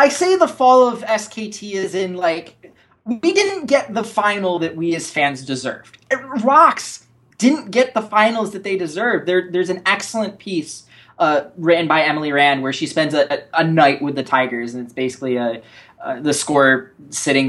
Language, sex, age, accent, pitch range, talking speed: English, male, 20-39, American, 130-190 Hz, 180 wpm